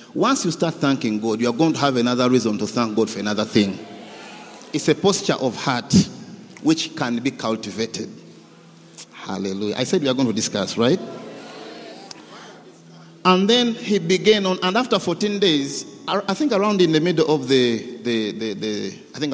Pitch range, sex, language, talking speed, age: 125-185 Hz, male, English, 180 wpm, 50-69